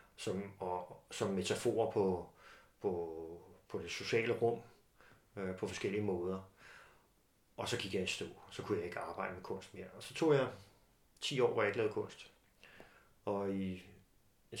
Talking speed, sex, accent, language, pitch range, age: 175 wpm, male, native, Danish, 95-115 Hz, 30-49